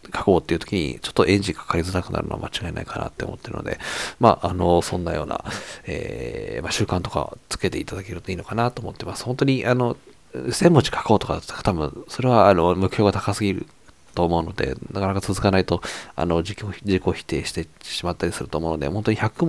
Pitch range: 90-110 Hz